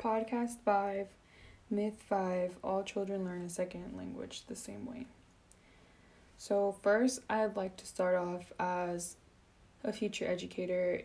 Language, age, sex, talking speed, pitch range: English, 10-29, female, 130 wpm, 170-195 Hz